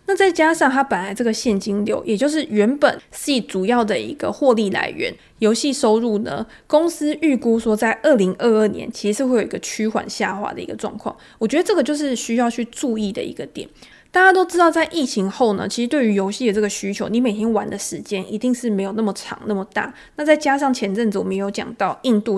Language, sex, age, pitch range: Chinese, female, 20-39, 200-255 Hz